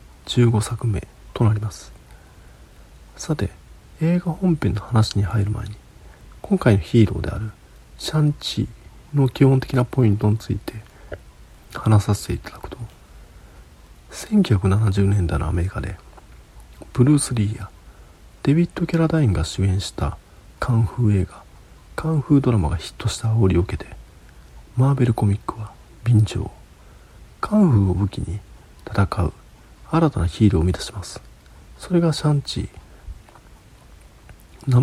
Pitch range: 90-125 Hz